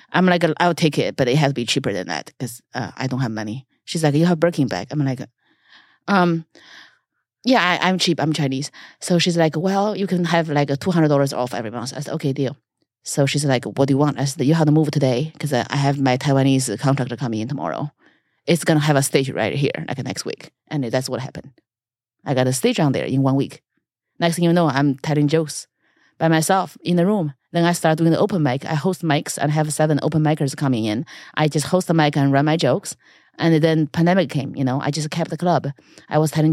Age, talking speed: 30-49, 245 wpm